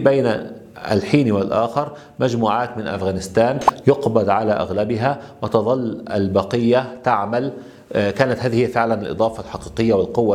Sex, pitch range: male, 105-125 Hz